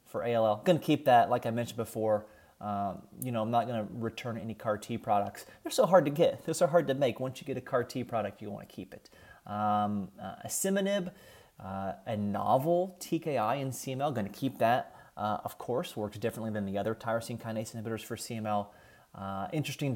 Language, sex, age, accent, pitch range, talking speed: English, male, 30-49, American, 105-140 Hz, 200 wpm